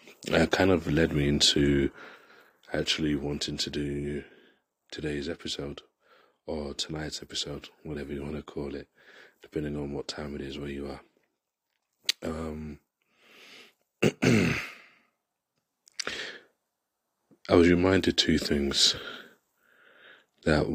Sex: male